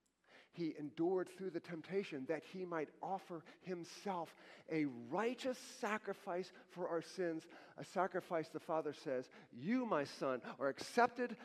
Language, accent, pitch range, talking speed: English, American, 160-205 Hz, 135 wpm